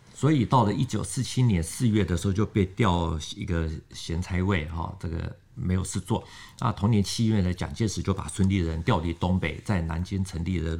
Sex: male